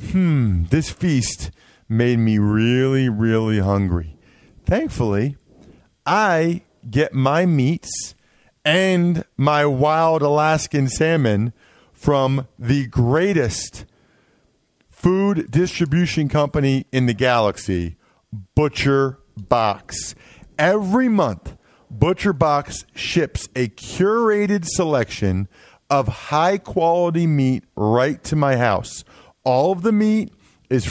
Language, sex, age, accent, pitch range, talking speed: English, male, 40-59, American, 130-190 Hz, 95 wpm